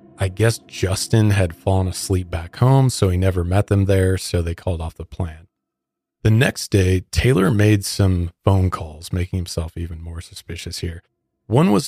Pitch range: 85-110 Hz